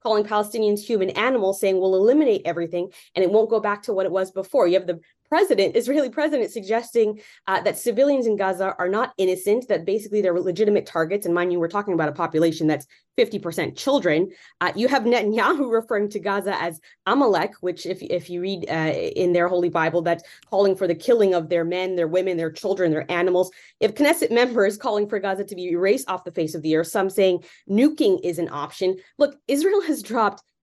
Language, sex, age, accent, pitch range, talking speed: English, female, 20-39, American, 185-275 Hz, 210 wpm